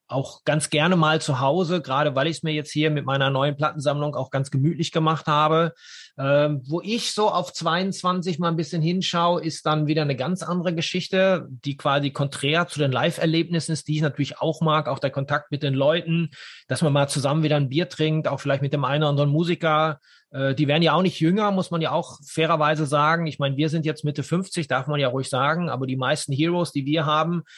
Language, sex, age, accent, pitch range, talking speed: German, male, 30-49, German, 140-165 Hz, 225 wpm